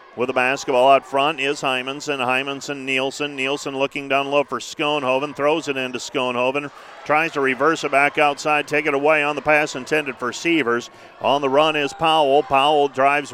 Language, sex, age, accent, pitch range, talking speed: English, male, 50-69, American, 140-155 Hz, 185 wpm